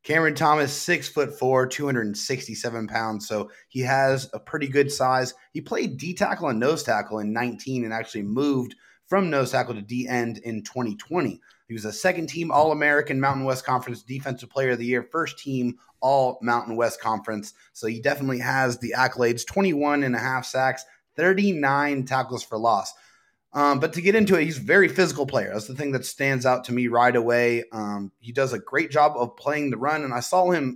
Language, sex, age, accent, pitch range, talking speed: English, male, 30-49, American, 120-145 Hz, 195 wpm